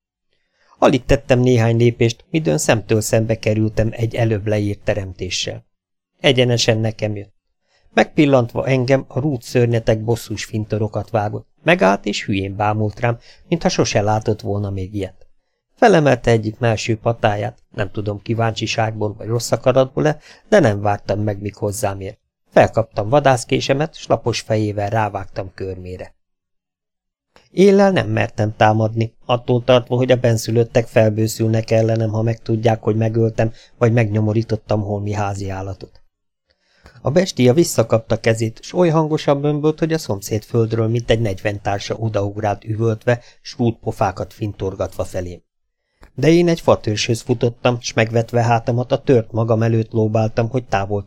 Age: 50-69